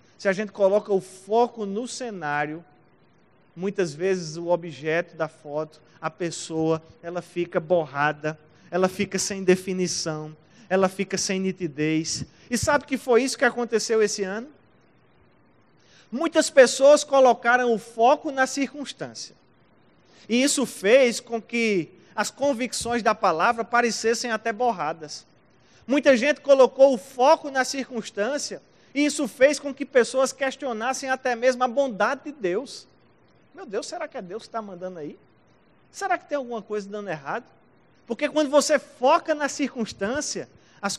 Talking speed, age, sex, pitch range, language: 145 wpm, 20-39, male, 175-255 Hz, Portuguese